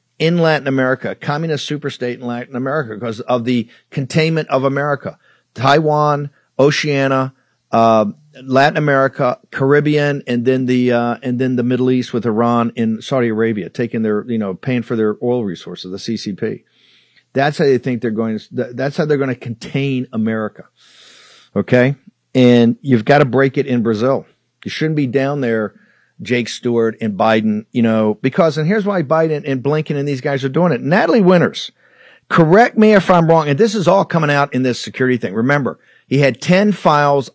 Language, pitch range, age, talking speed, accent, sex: English, 120-145 Hz, 50-69, 185 wpm, American, male